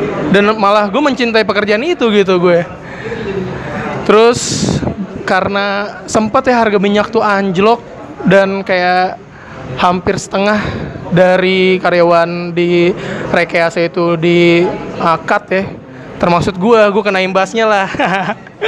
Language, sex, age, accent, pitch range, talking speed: Indonesian, male, 20-39, native, 180-220 Hz, 110 wpm